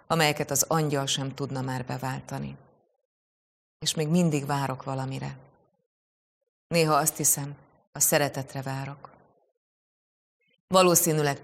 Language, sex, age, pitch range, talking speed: Hungarian, female, 30-49, 135-155 Hz, 100 wpm